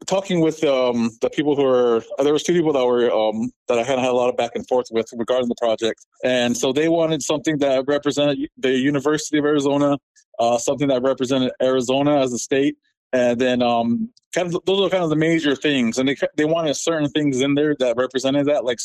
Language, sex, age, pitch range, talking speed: English, male, 20-39, 120-140 Hz, 225 wpm